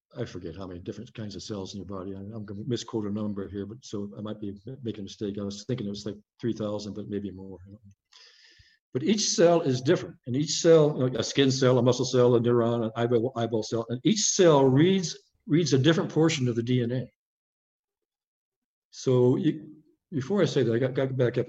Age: 50-69